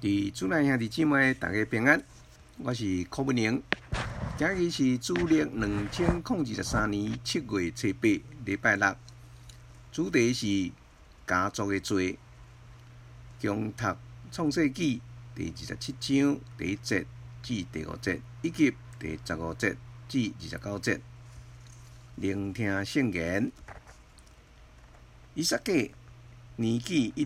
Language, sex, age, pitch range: Chinese, male, 50-69, 100-120 Hz